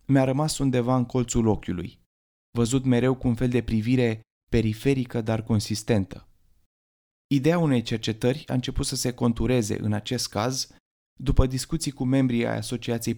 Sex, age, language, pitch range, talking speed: male, 20-39, Romanian, 105-130 Hz, 150 wpm